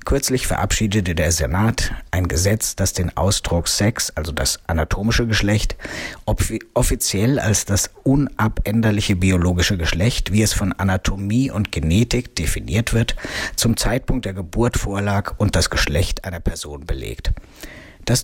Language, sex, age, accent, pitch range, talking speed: German, male, 50-69, German, 90-110 Hz, 130 wpm